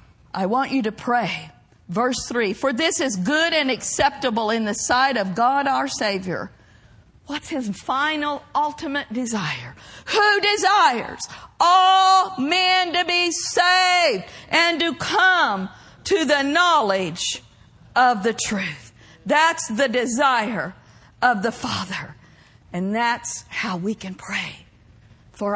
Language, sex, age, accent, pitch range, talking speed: English, female, 50-69, American, 200-300 Hz, 125 wpm